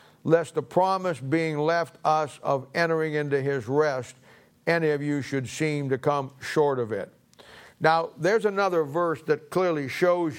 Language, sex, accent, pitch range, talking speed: English, male, American, 135-170 Hz, 160 wpm